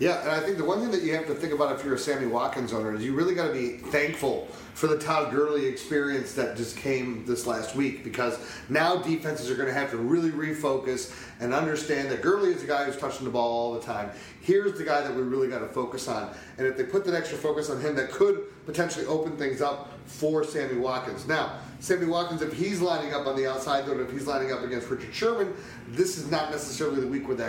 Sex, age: male, 30-49